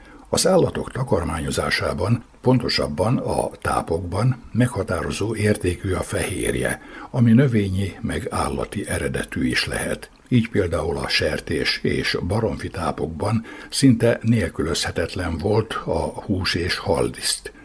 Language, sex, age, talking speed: Hungarian, male, 60-79, 105 wpm